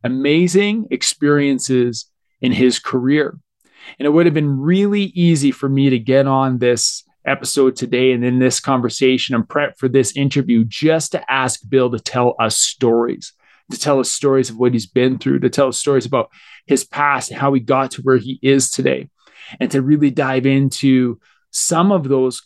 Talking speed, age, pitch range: 185 wpm, 20-39, 130-155 Hz